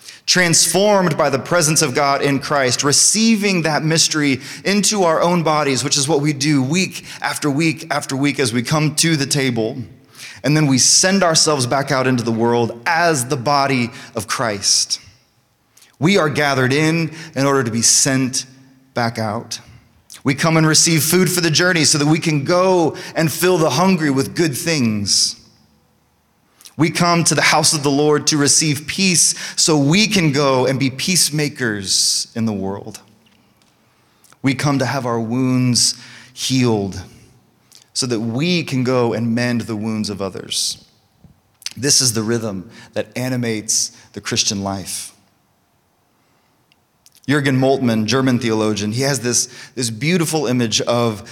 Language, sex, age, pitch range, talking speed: English, male, 30-49, 115-155 Hz, 160 wpm